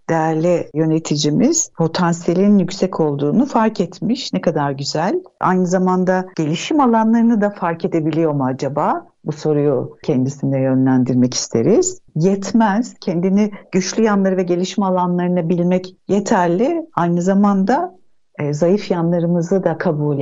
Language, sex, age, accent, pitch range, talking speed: Turkish, female, 60-79, native, 155-205 Hz, 120 wpm